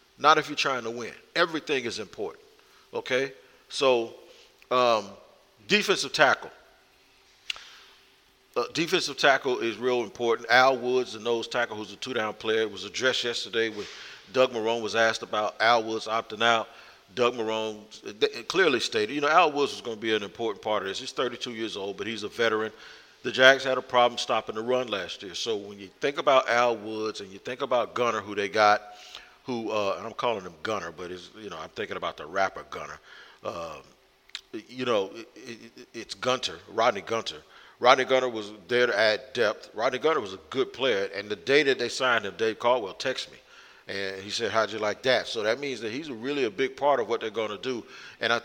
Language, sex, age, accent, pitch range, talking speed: English, male, 50-69, American, 110-140 Hz, 205 wpm